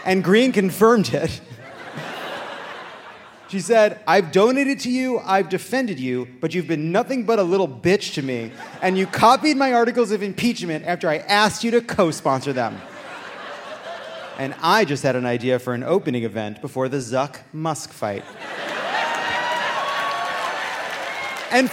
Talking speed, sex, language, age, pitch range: 145 wpm, male, English, 30-49, 145-225 Hz